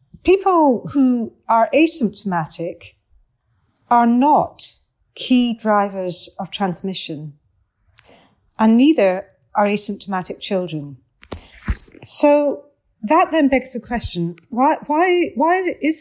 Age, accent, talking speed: 40-59, British, 95 wpm